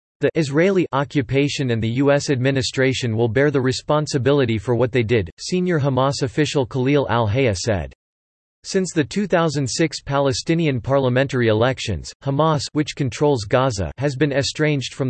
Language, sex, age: English, male, 40-59